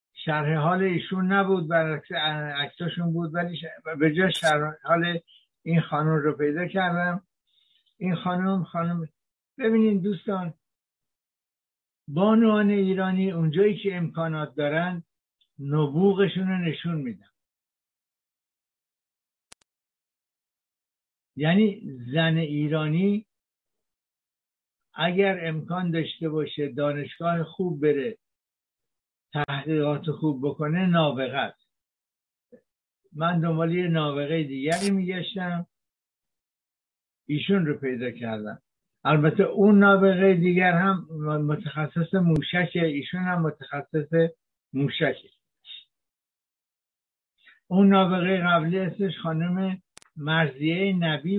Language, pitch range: Persian, 155-185 Hz